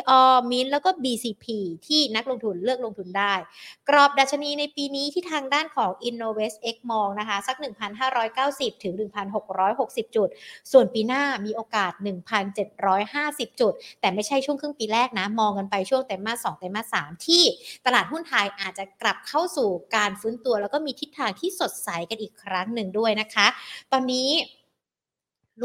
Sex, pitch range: female, 200-260 Hz